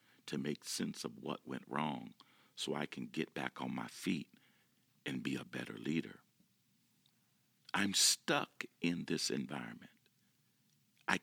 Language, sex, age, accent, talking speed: English, male, 50-69, American, 140 wpm